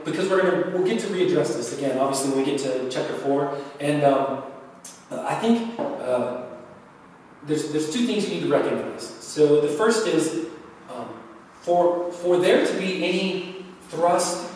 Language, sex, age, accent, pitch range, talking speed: English, male, 30-49, American, 150-200 Hz, 175 wpm